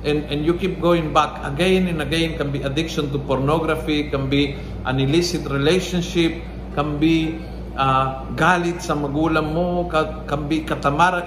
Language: Filipino